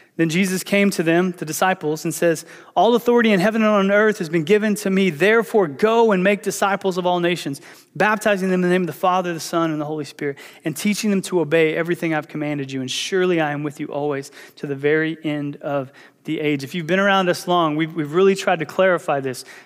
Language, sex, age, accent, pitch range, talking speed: English, male, 30-49, American, 160-200 Hz, 240 wpm